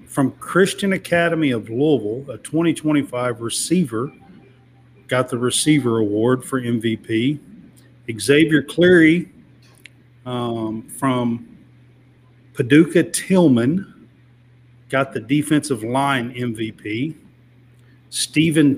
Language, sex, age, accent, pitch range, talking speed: English, male, 50-69, American, 125-155 Hz, 85 wpm